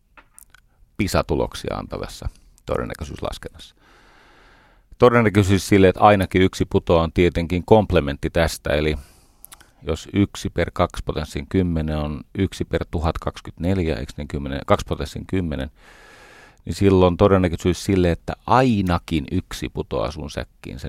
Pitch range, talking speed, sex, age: 80-100 Hz, 105 wpm, male, 40-59